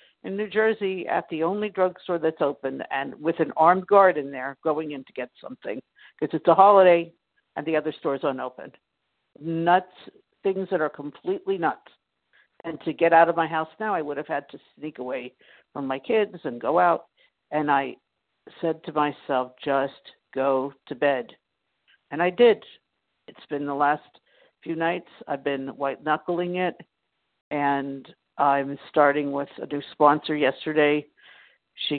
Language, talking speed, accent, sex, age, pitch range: English, 170 wpm, American, female, 60-79, 140-170 Hz